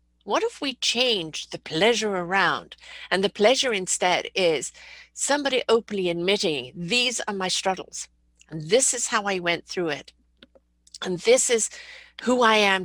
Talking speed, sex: 155 wpm, female